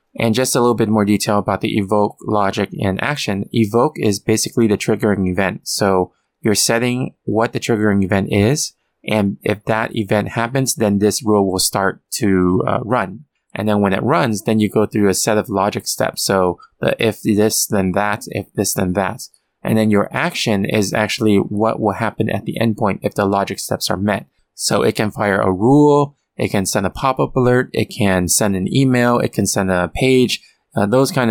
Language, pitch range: English, 100-115 Hz